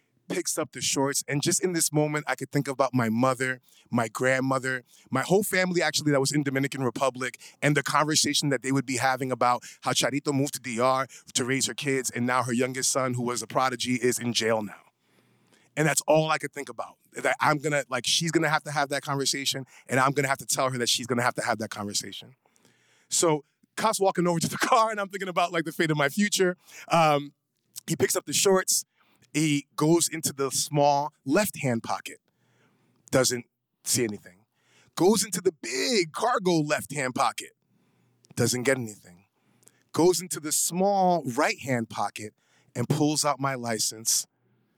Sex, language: male, English